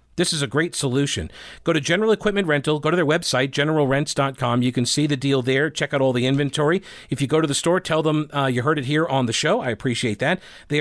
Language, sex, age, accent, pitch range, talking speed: English, male, 40-59, American, 130-160 Hz, 255 wpm